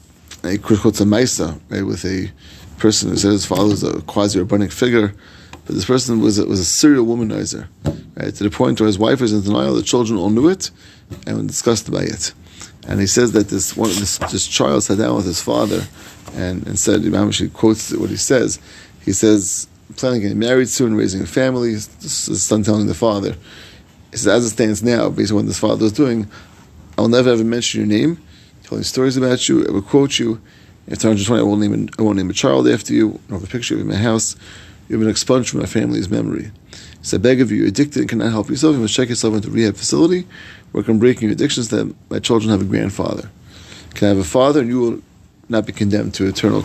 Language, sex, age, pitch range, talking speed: English, male, 30-49, 100-115 Hz, 235 wpm